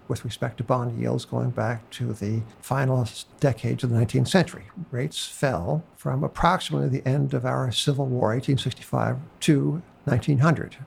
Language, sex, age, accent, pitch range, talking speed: English, male, 60-79, American, 120-145 Hz, 155 wpm